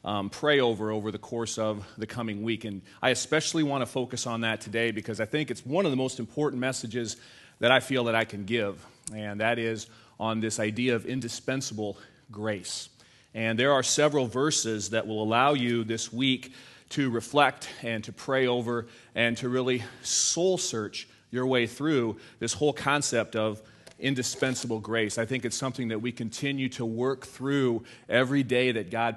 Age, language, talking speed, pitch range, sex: 30-49, English, 185 wpm, 115-135 Hz, male